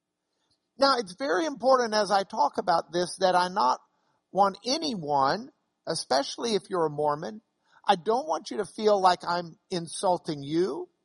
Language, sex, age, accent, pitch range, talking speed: English, male, 50-69, American, 155-220 Hz, 160 wpm